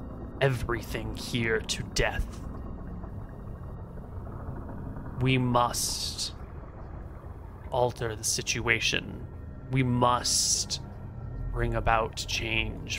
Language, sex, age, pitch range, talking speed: English, male, 20-39, 95-120 Hz, 65 wpm